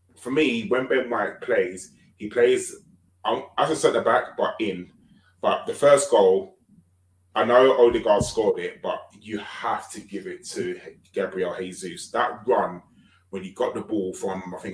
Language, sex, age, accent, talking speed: English, male, 20-39, British, 175 wpm